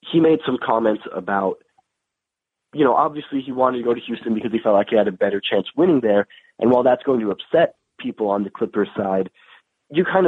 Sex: male